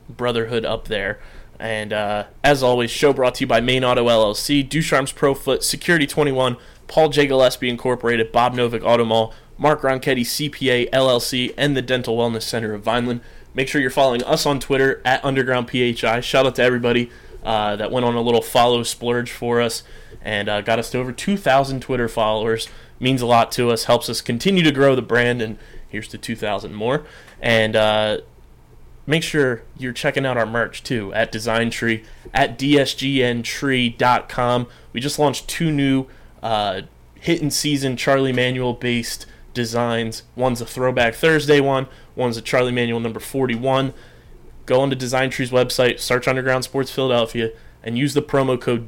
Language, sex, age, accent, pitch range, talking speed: English, male, 20-39, American, 115-135 Hz, 170 wpm